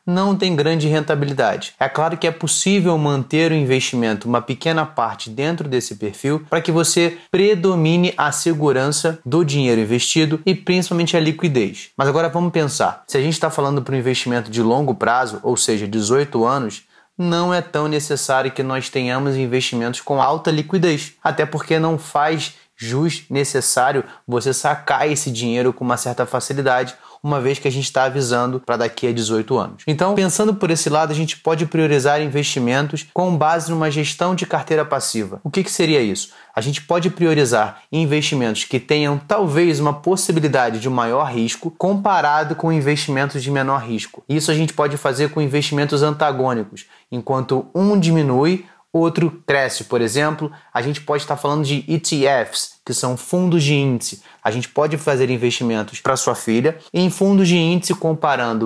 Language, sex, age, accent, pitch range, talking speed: Portuguese, male, 20-39, Brazilian, 130-165 Hz, 170 wpm